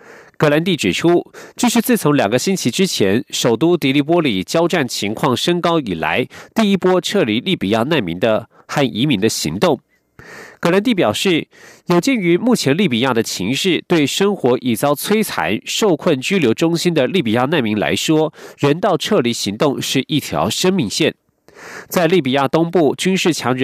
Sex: male